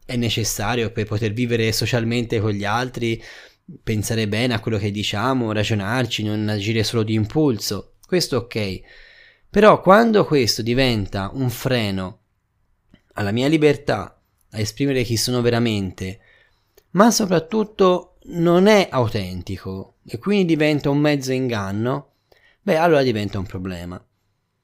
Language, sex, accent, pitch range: Italian, male, native, 105-135 Hz